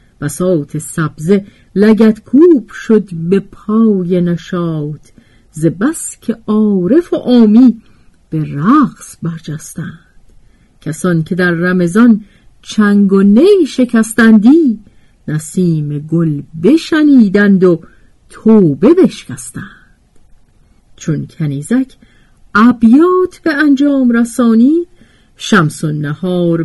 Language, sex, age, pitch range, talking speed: Persian, female, 50-69, 160-225 Hz, 85 wpm